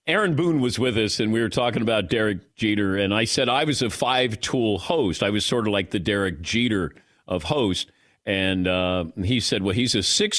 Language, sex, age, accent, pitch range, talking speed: English, male, 50-69, American, 95-135 Hz, 225 wpm